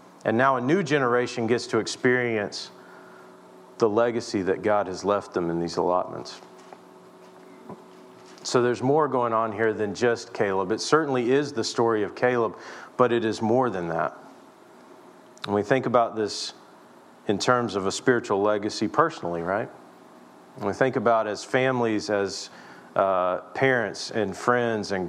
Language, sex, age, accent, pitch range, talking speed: English, male, 40-59, American, 100-120 Hz, 155 wpm